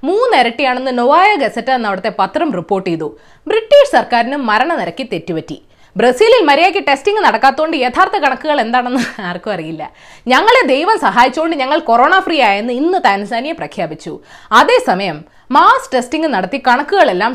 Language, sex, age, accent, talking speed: Malayalam, female, 20-39, native, 125 wpm